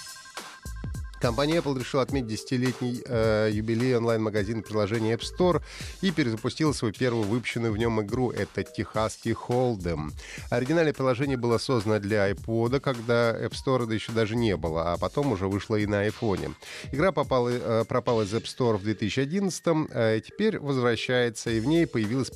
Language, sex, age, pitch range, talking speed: Russian, male, 30-49, 95-130 Hz, 165 wpm